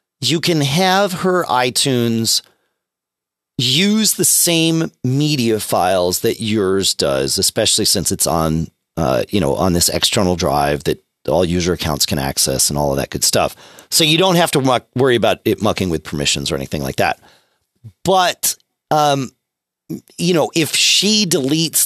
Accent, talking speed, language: American, 160 wpm, English